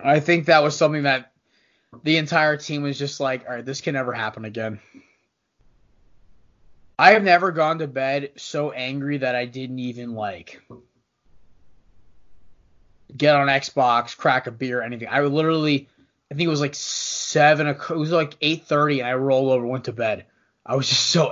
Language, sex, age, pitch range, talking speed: English, male, 20-39, 130-160 Hz, 185 wpm